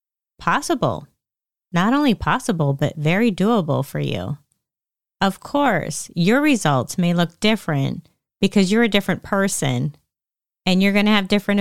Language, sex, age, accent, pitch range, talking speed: English, female, 30-49, American, 155-200 Hz, 140 wpm